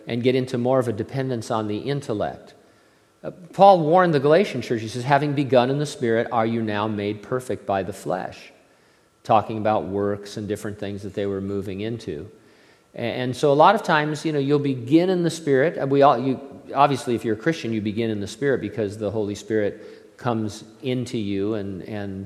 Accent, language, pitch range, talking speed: American, English, 110-140 Hz, 205 wpm